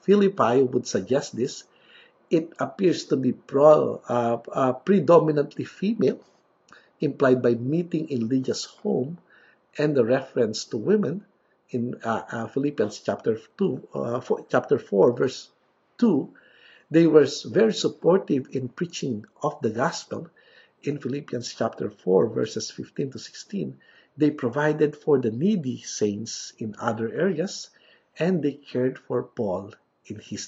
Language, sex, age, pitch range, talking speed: English, male, 50-69, 120-180 Hz, 135 wpm